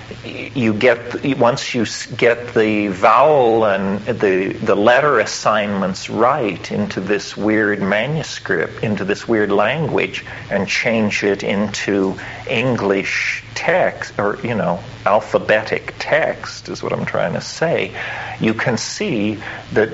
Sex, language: male, English